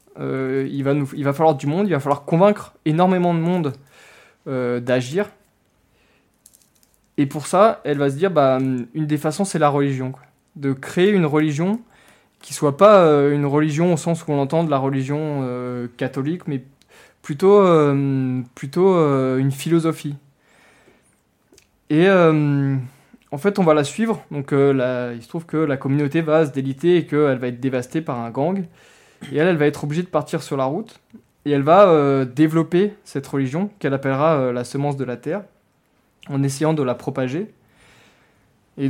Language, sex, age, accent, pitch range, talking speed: French, male, 20-39, French, 135-170 Hz, 185 wpm